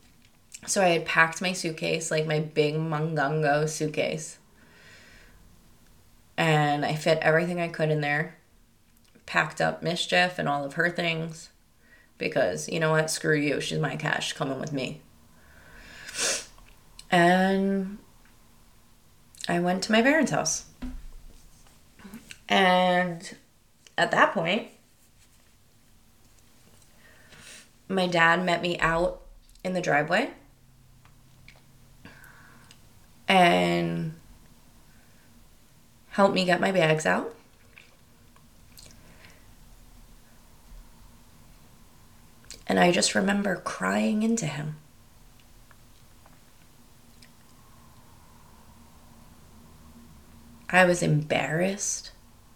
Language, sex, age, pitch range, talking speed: English, female, 20-39, 115-175 Hz, 85 wpm